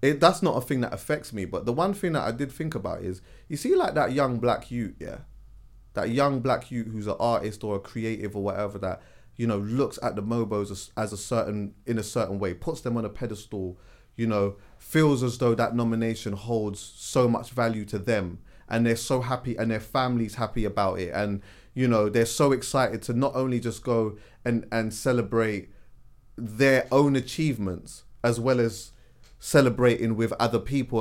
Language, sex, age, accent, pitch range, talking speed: English, male, 30-49, British, 110-135 Hz, 205 wpm